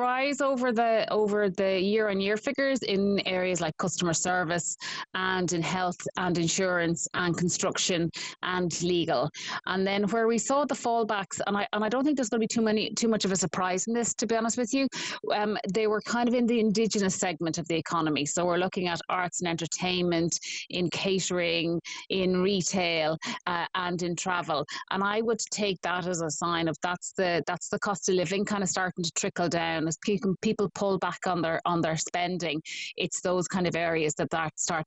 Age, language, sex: 30-49, English, female